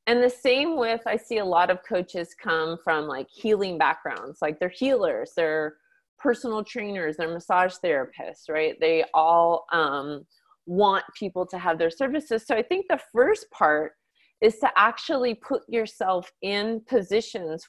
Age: 30-49